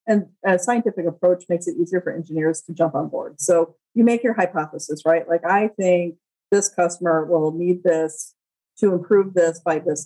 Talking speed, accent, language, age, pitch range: 190 wpm, American, English, 40-59, 165-200 Hz